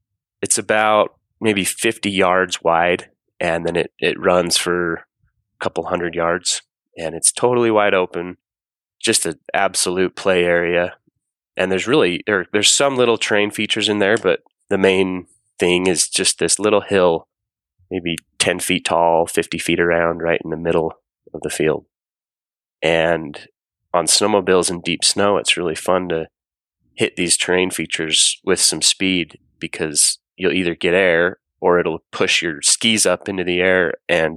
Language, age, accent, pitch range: English, 20-39, American, 85-105 Hz